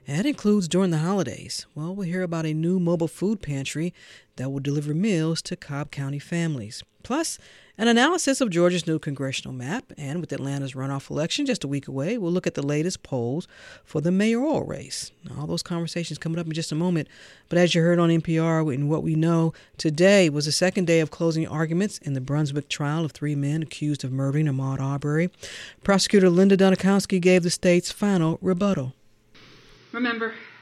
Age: 50-69